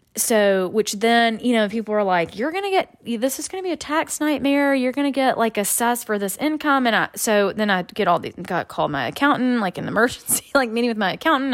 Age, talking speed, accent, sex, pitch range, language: 20-39, 255 wpm, American, female, 190-245 Hz, English